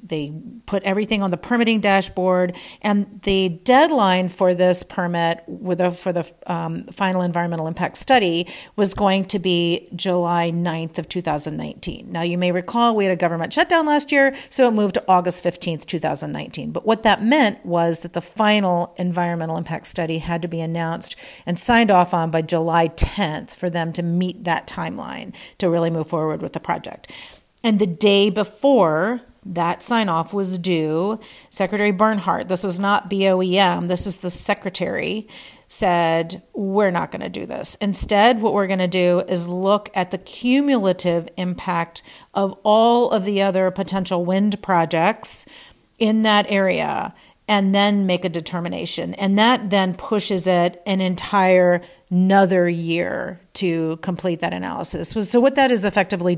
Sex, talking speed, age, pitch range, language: female, 160 wpm, 40-59, 175-205 Hz, English